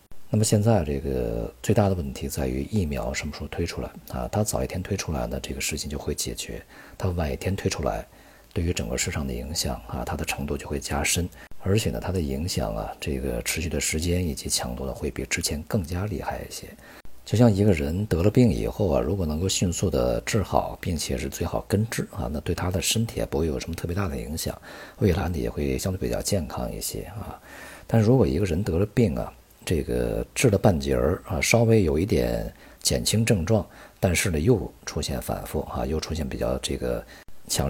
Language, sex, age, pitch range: Chinese, male, 50-69, 70-95 Hz